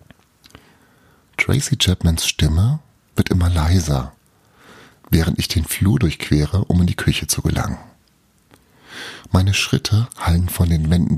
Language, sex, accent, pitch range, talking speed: German, male, German, 80-105 Hz, 125 wpm